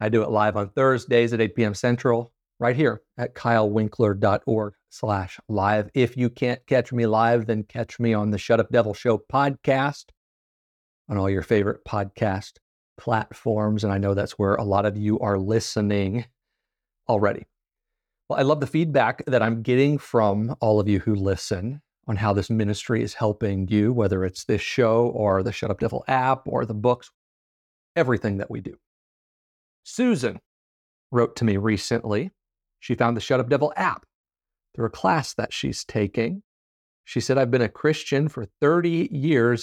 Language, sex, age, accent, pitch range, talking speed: English, male, 40-59, American, 105-125 Hz, 175 wpm